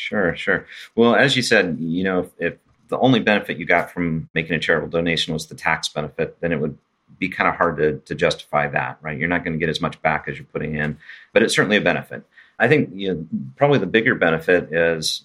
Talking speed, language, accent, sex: 245 wpm, English, American, male